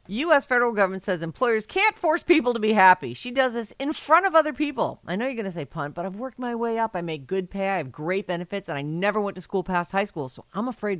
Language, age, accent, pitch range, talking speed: English, 50-69, American, 135-200 Hz, 285 wpm